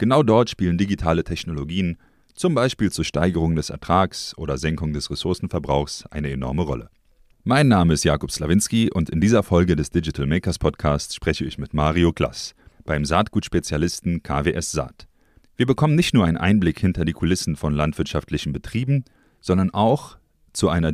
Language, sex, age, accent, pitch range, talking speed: German, male, 30-49, German, 80-105 Hz, 160 wpm